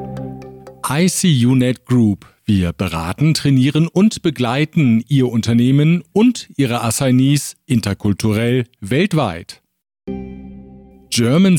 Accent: German